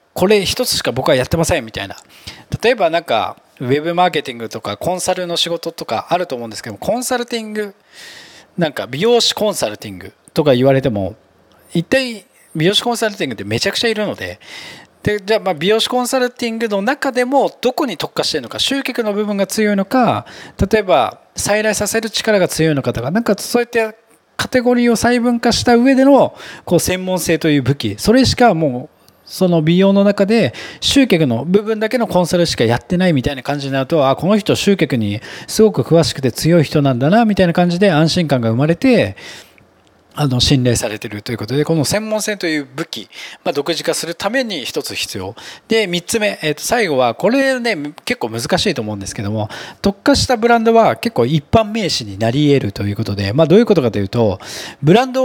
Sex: male